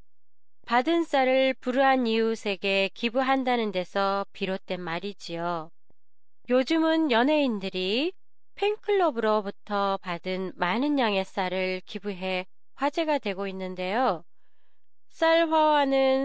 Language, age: Japanese, 30-49